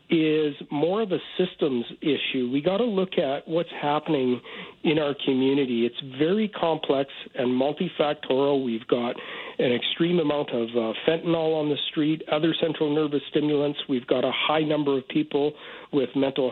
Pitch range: 135-155 Hz